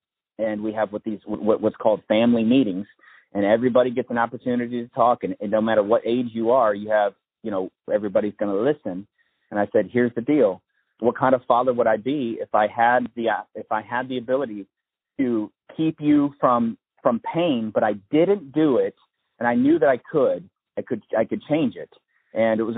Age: 30-49